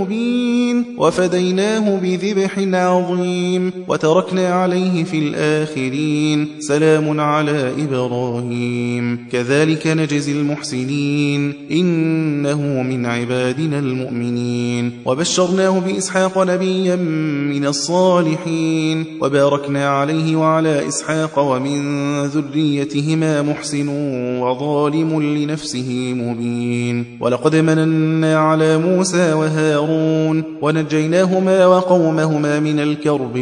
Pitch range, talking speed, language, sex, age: 130-160 Hz, 70 wpm, Persian, male, 20-39